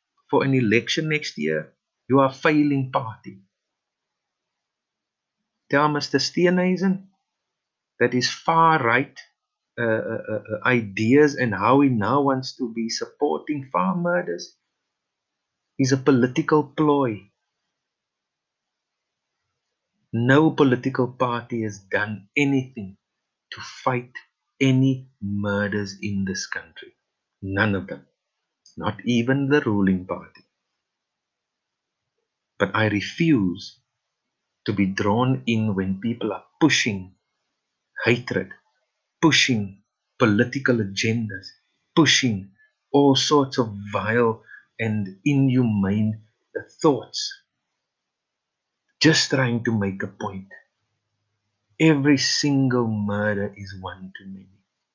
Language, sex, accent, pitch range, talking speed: English, male, Indian, 105-140 Hz, 100 wpm